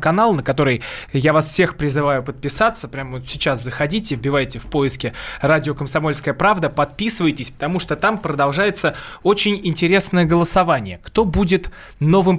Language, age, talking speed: Russian, 20-39, 140 wpm